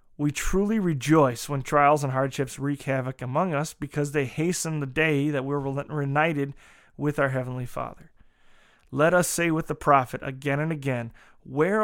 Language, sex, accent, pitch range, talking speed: English, male, American, 135-165 Hz, 165 wpm